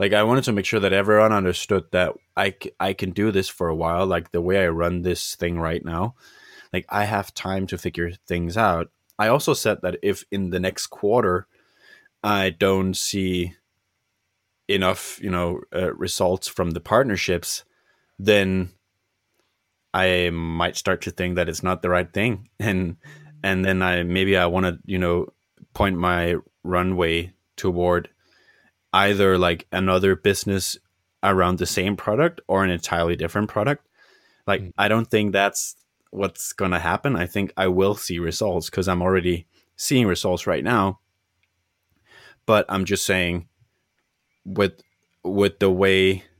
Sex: male